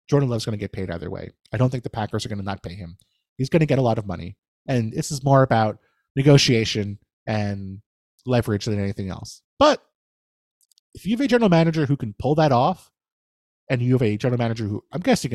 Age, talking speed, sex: 30-49, 230 wpm, male